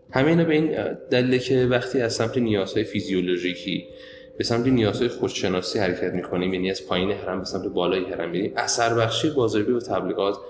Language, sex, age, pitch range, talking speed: Persian, male, 20-39, 95-120 Hz, 190 wpm